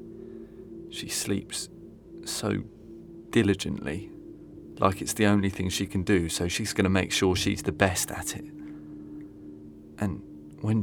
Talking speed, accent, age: 140 wpm, British, 30-49